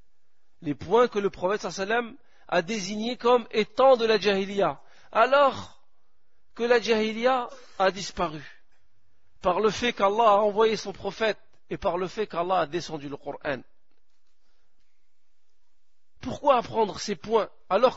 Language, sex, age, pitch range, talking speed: French, male, 50-69, 170-235 Hz, 135 wpm